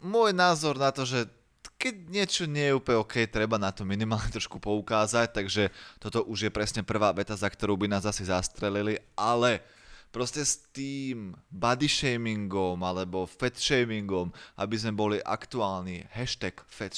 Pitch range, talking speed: 100-125 Hz, 160 wpm